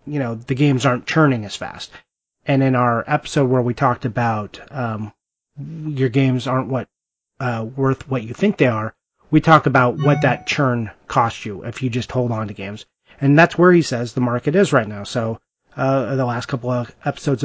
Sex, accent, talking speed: male, American, 205 wpm